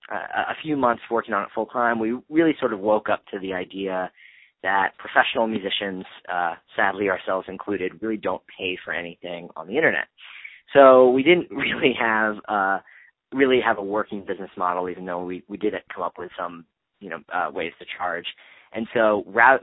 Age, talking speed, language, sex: 30-49, 195 wpm, English, male